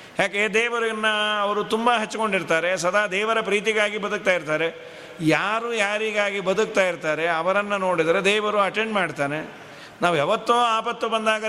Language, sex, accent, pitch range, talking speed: Kannada, male, native, 190-235 Hz, 120 wpm